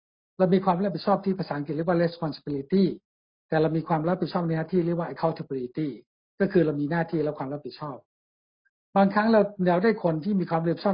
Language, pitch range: Thai, 155-185 Hz